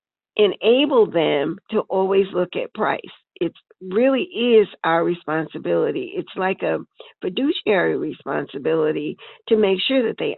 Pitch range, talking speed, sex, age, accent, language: 180-250 Hz, 125 wpm, female, 50-69, American, English